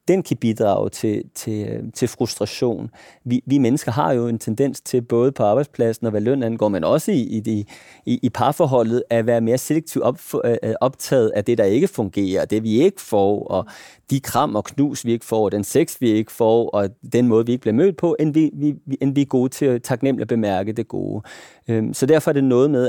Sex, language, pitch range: male, Danish, 115-140 Hz